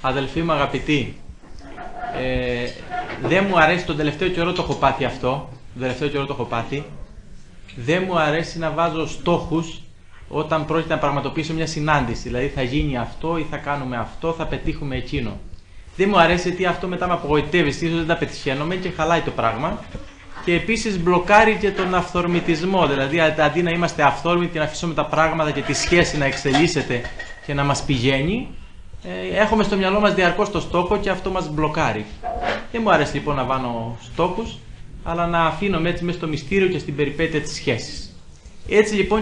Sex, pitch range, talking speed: male, 130-175 Hz, 175 wpm